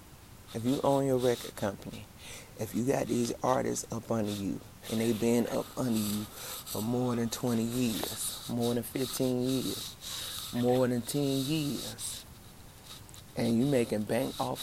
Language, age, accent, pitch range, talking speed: English, 30-49, American, 110-125 Hz, 155 wpm